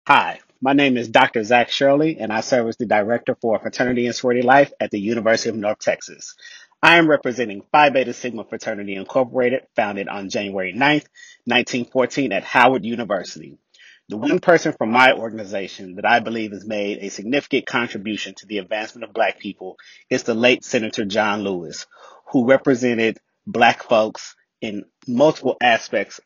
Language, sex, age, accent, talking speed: English, male, 30-49, American, 165 wpm